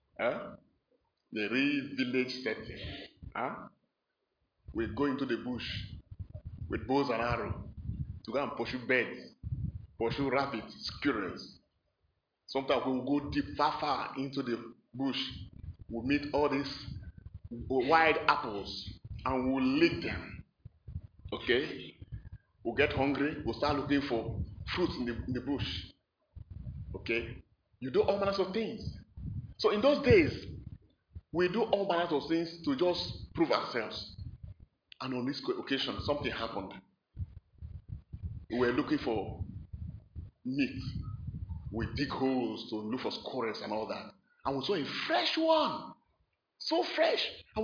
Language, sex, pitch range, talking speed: English, male, 115-180 Hz, 140 wpm